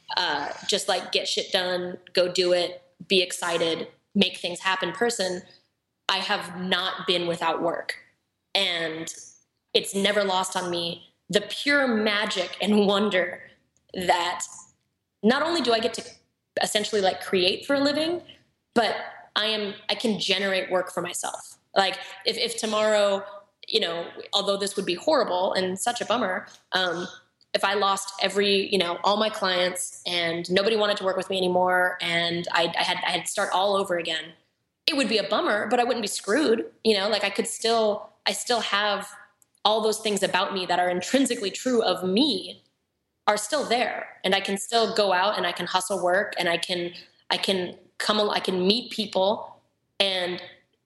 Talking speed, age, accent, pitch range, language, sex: 180 wpm, 20-39, American, 180-210 Hz, English, female